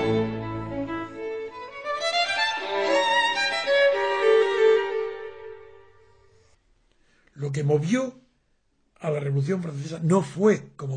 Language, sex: Spanish, male